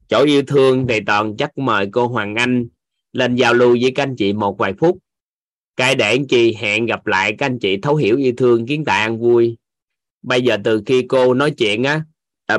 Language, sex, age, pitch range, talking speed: Vietnamese, male, 20-39, 110-135 Hz, 225 wpm